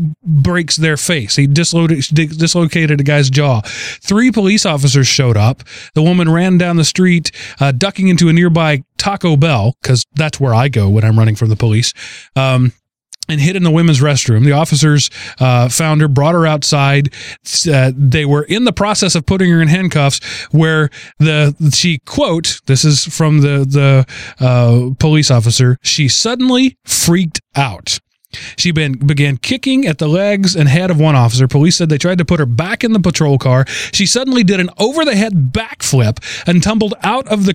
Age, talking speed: 30-49, 180 wpm